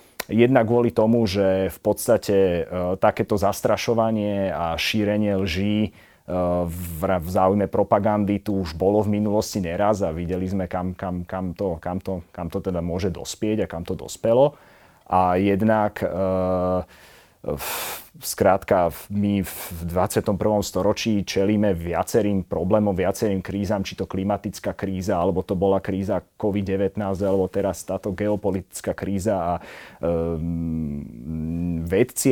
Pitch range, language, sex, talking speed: 95-115 Hz, Slovak, male, 135 wpm